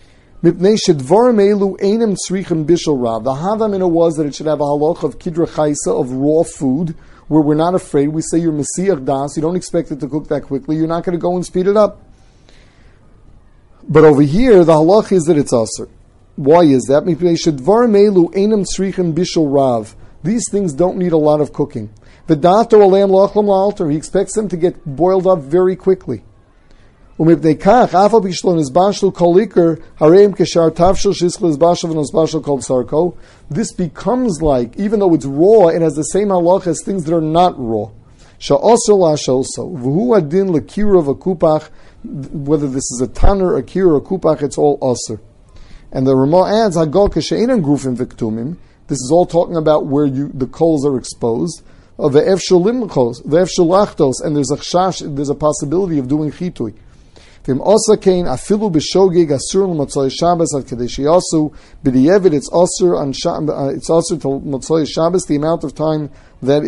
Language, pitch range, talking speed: English, 135-180 Hz, 135 wpm